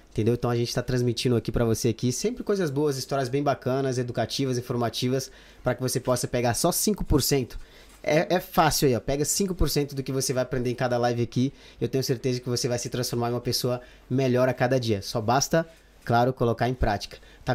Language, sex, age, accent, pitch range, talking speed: Portuguese, male, 20-39, Brazilian, 125-155 Hz, 215 wpm